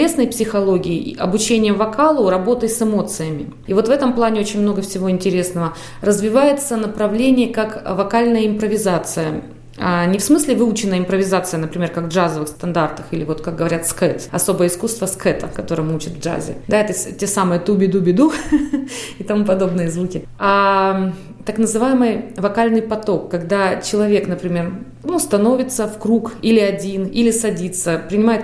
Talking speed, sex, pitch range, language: 150 wpm, female, 185-225 Hz, Russian